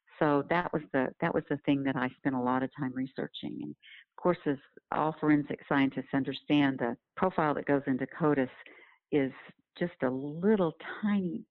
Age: 50-69